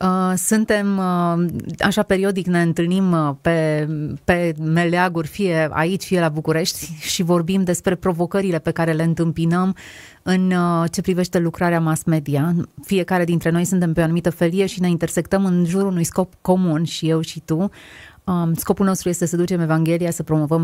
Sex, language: female, Romanian